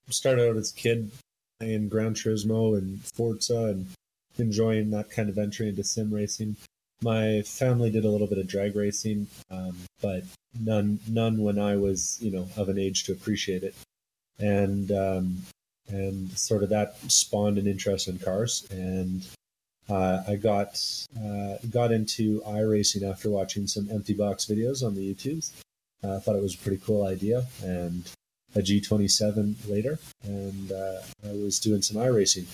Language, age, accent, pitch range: English, 30-49, American, 100-110 Hz